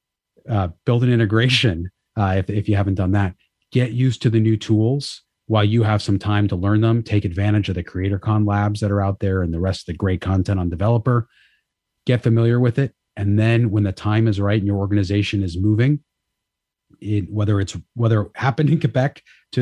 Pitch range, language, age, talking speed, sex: 100-115 Hz, English, 30-49, 215 wpm, male